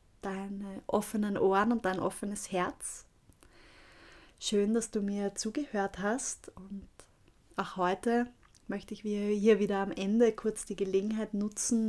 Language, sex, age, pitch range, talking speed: German, female, 30-49, 195-220 Hz, 130 wpm